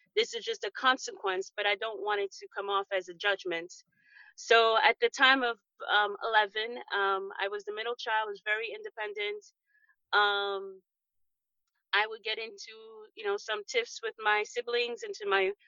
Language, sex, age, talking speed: English, female, 30-49, 185 wpm